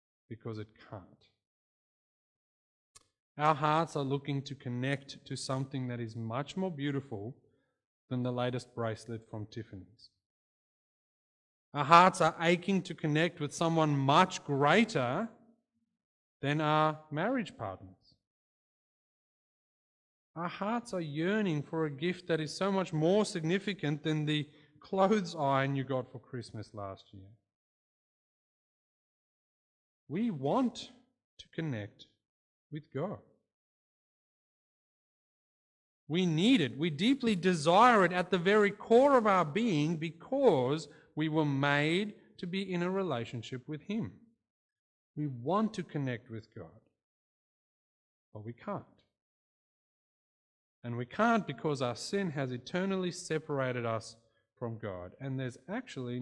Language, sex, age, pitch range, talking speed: English, male, 30-49, 120-185 Hz, 120 wpm